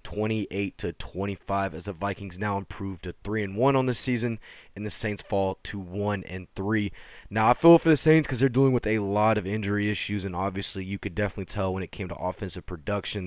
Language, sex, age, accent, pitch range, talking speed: English, male, 20-39, American, 95-115 Hz, 225 wpm